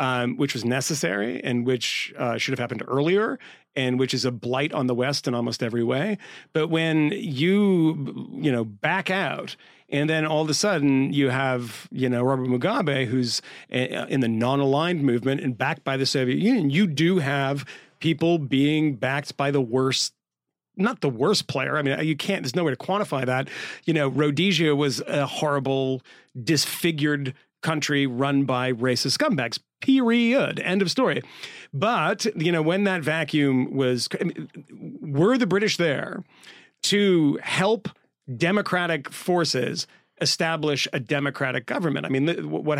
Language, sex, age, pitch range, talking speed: English, male, 40-59, 130-170 Hz, 160 wpm